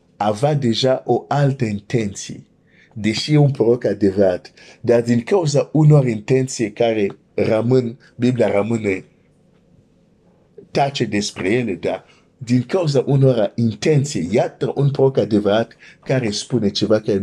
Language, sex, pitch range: Romanian, male, 105-135 Hz